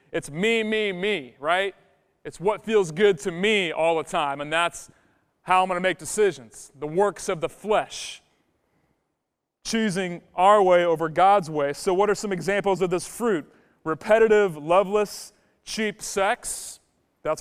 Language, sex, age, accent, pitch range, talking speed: English, male, 30-49, American, 165-215 Hz, 160 wpm